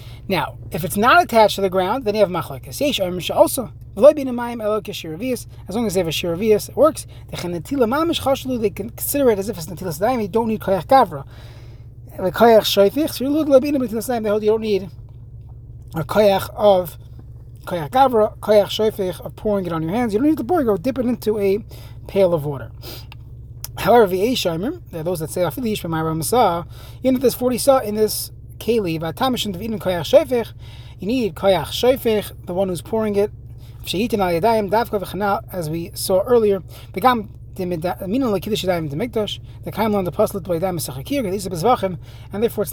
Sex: male